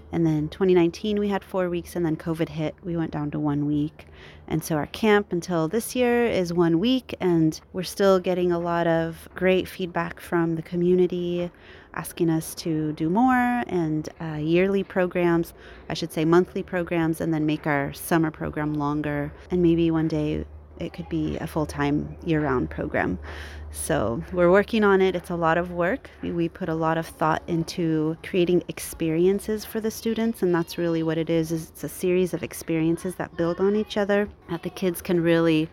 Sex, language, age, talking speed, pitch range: female, English, 30-49, 195 wpm, 155-180 Hz